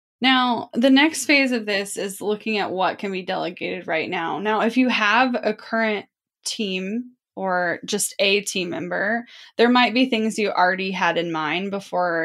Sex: female